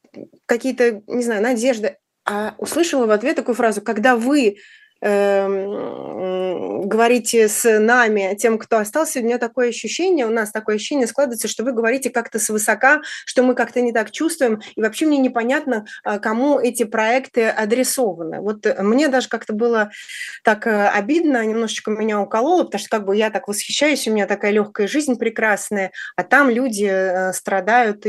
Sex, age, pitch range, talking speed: female, 20-39, 195-240 Hz, 160 wpm